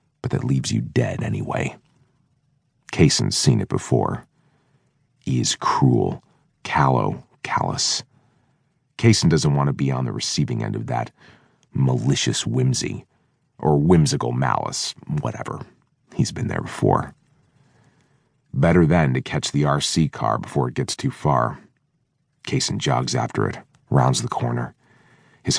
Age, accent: 40-59, American